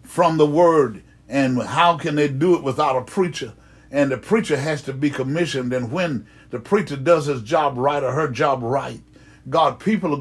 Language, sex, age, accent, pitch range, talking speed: English, male, 60-79, American, 130-155 Hz, 200 wpm